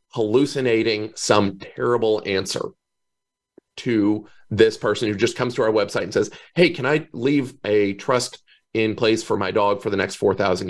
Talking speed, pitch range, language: 170 wpm, 110-140 Hz, English